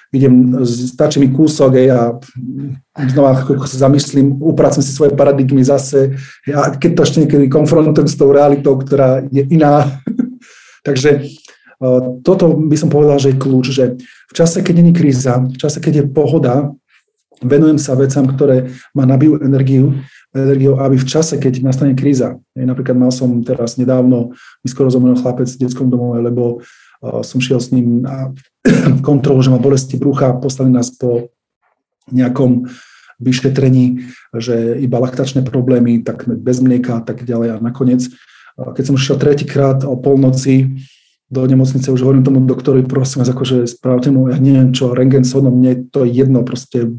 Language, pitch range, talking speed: Slovak, 125-140 Hz, 165 wpm